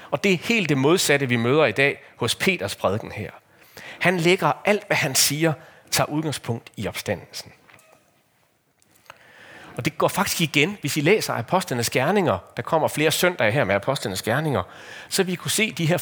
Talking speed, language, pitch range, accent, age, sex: 180 wpm, Danish, 110-150 Hz, native, 40-59, male